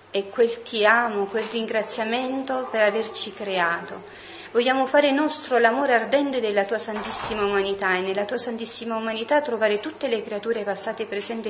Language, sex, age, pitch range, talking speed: Italian, female, 40-59, 195-245 Hz, 150 wpm